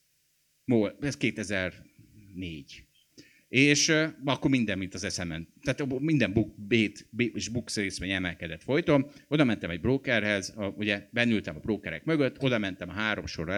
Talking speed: 140 wpm